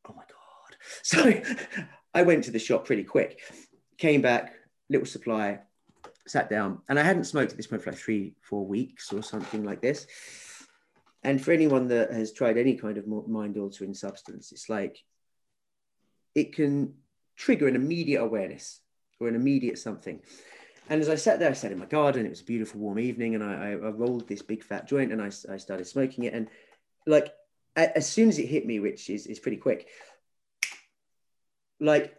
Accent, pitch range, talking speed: British, 115-155 Hz, 180 wpm